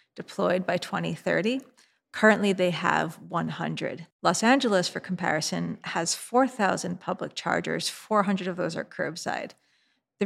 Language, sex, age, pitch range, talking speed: English, female, 30-49, 180-210 Hz, 125 wpm